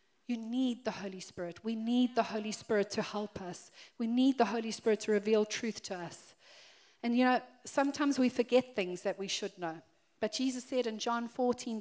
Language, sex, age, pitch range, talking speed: English, female, 40-59, 205-250 Hz, 205 wpm